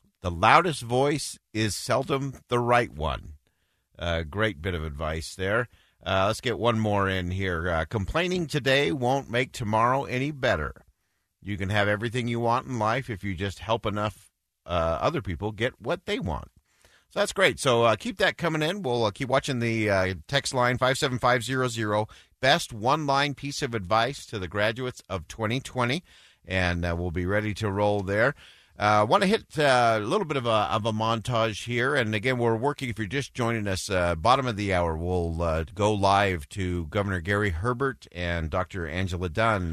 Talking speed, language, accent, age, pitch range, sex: 190 wpm, English, American, 50-69, 90-120 Hz, male